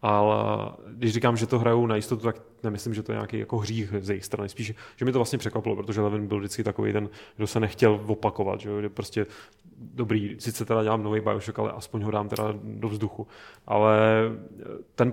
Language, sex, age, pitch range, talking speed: Czech, male, 30-49, 110-120 Hz, 210 wpm